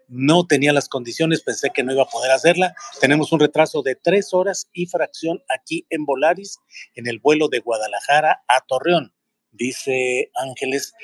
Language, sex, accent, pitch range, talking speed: Spanish, male, Mexican, 130-175 Hz, 170 wpm